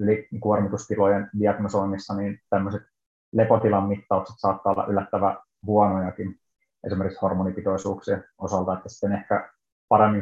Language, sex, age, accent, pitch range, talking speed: Finnish, male, 30-49, native, 95-100 Hz, 100 wpm